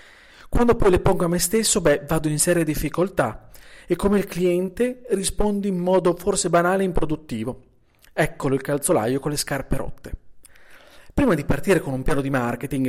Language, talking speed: Italian, 175 wpm